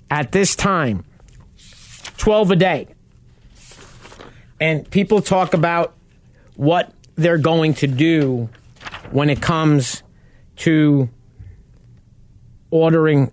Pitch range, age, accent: 125-170 Hz, 50-69, American